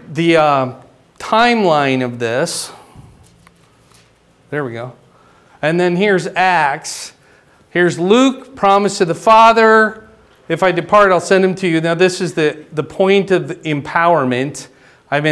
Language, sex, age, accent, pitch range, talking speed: English, male, 40-59, American, 145-185 Hz, 135 wpm